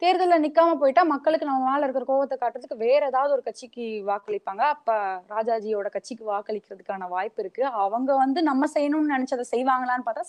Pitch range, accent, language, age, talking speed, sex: 215-295 Hz, native, Tamil, 20-39, 155 wpm, female